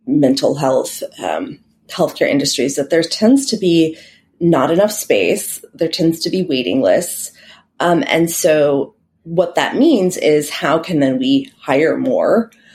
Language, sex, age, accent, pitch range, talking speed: English, female, 30-49, American, 140-185 Hz, 150 wpm